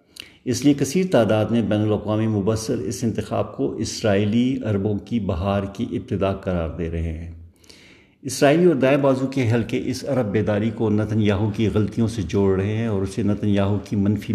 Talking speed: 190 wpm